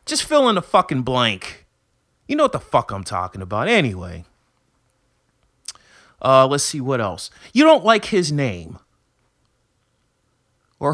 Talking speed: 145 wpm